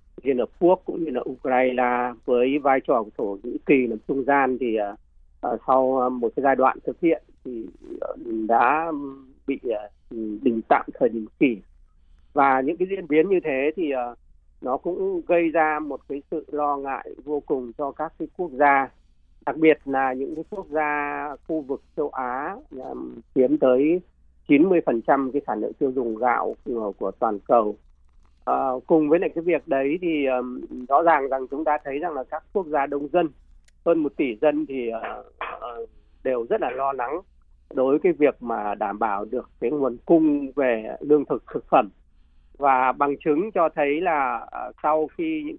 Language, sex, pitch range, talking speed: Vietnamese, male, 115-155 Hz, 190 wpm